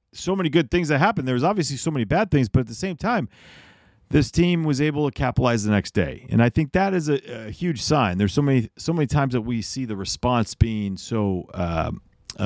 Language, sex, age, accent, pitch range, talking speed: English, male, 40-59, American, 105-150 Hz, 240 wpm